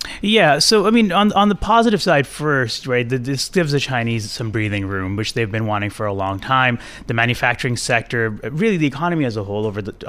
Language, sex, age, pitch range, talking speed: English, male, 30-49, 110-135 Hz, 220 wpm